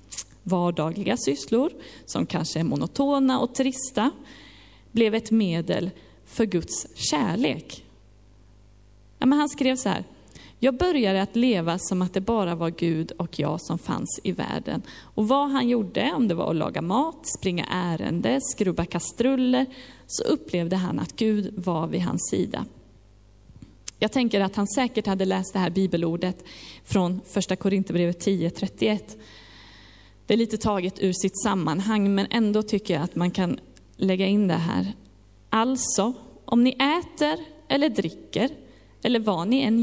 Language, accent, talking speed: Swedish, native, 150 wpm